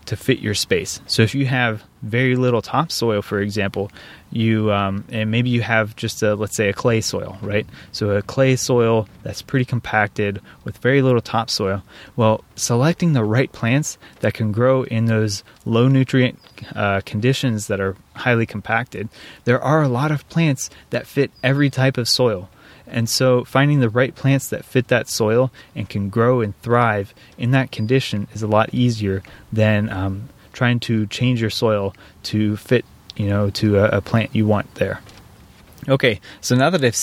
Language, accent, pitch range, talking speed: English, American, 105-125 Hz, 185 wpm